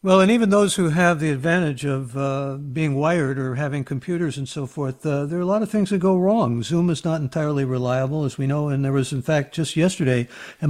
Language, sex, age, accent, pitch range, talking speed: English, male, 60-79, American, 135-160 Hz, 245 wpm